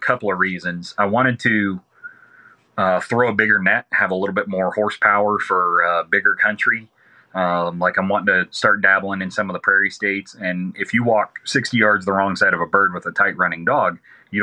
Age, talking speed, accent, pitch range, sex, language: 30-49, 215 wpm, American, 90-115 Hz, male, English